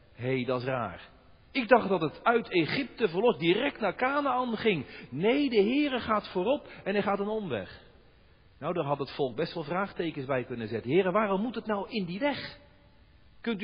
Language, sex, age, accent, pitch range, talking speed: Dutch, male, 50-69, Dutch, 195-260 Hz, 200 wpm